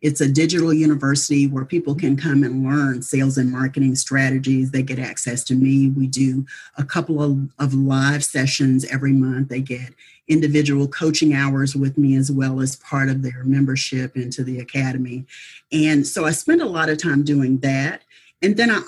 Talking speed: 190 wpm